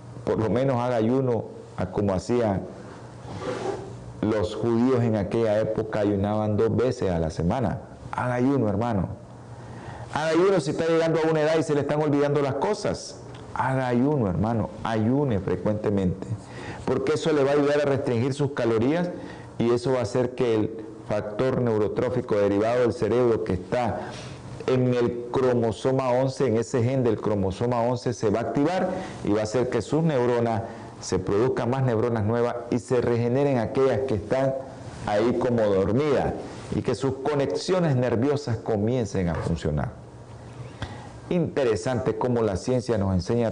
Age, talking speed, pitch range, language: 50-69, 155 wpm, 110-135 Hz, Spanish